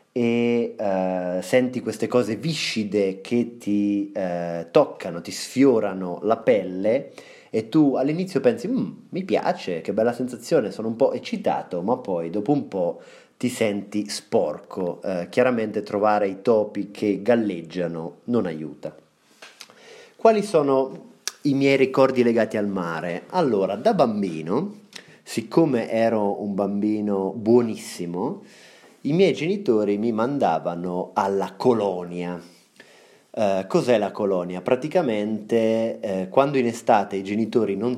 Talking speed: 125 wpm